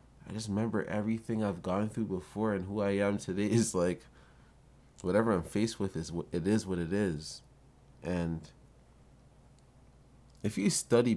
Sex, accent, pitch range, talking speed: male, American, 85-110 Hz, 155 wpm